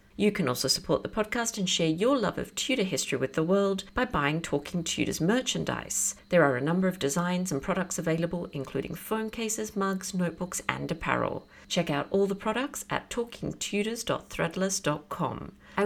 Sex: female